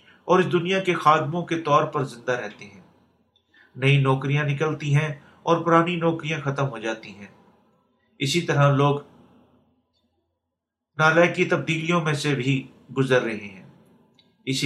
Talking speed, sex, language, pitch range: 140 wpm, male, Urdu, 135-165 Hz